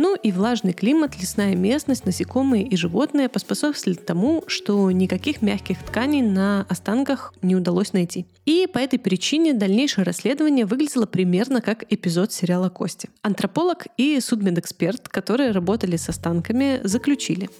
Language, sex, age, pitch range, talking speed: Russian, female, 20-39, 185-245 Hz, 140 wpm